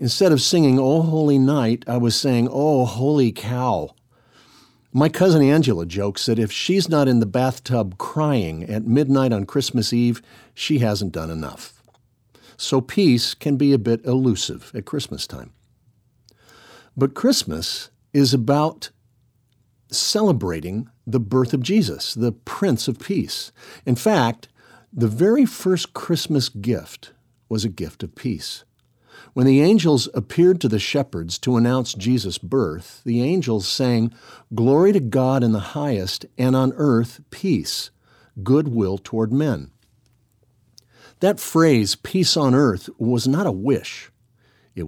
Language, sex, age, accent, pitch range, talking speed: English, male, 50-69, American, 115-140 Hz, 140 wpm